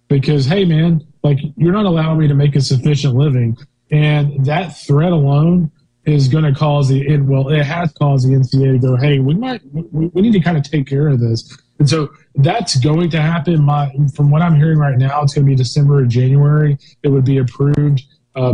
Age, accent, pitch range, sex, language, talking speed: 20-39, American, 135-155 Hz, male, English, 220 wpm